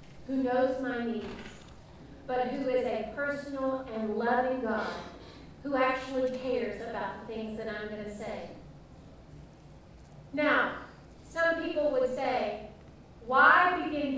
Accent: American